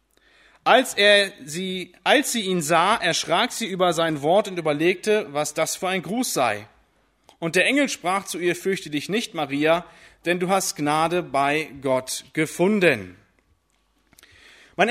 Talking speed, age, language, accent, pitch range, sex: 155 wpm, 30-49, German, German, 175-220 Hz, male